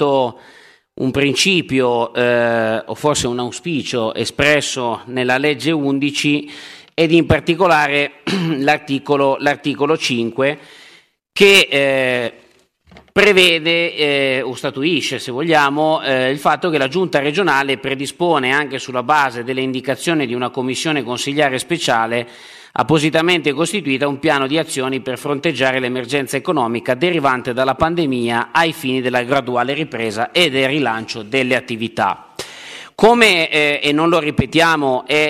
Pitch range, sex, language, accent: 130-155 Hz, male, Italian, native